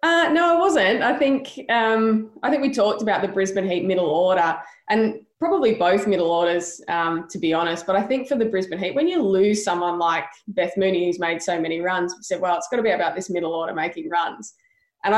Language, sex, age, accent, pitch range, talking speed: English, female, 20-39, Australian, 175-205 Hz, 235 wpm